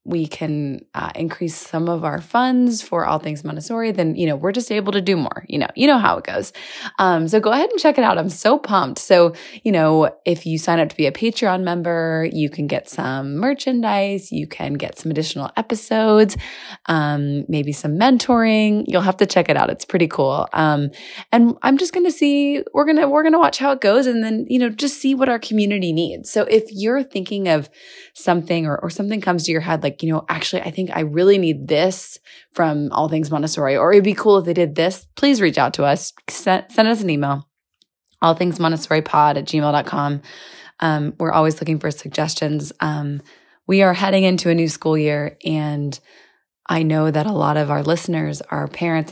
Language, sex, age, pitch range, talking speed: English, female, 20-39, 155-215 Hz, 215 wpm